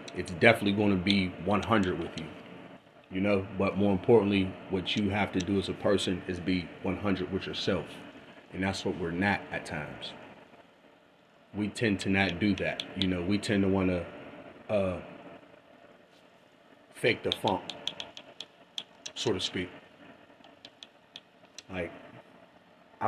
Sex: male